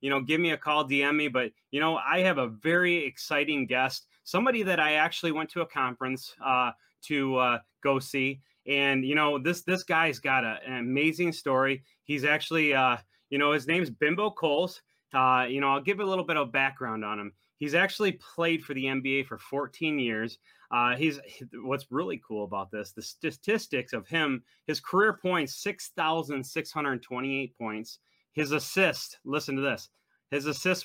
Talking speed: 195 wpm